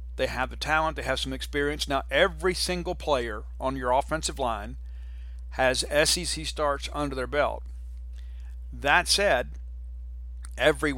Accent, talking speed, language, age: American, 135 wpm, English, 50-69